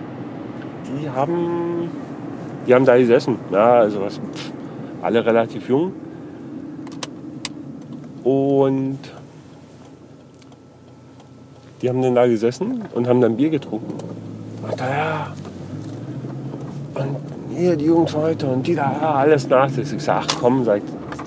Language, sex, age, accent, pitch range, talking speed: German, male, 40-59, German, 130-160 Hz, 125 wpm